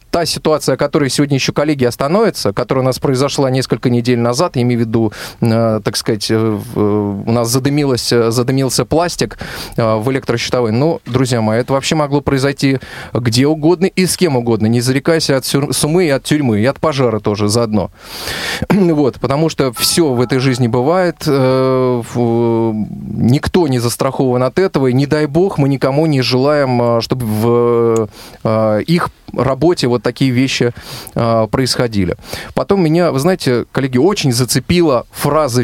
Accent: native